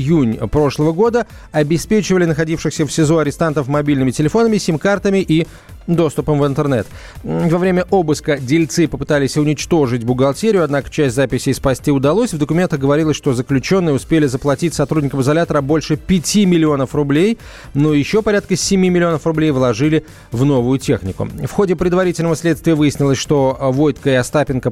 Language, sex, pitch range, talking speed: Russian, male, 130-165 Hz, 145 wpm